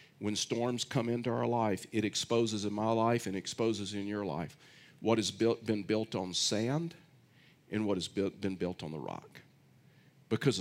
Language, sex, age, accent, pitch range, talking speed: English, male, 50-69, American, 105-135 Hz, 185 wpm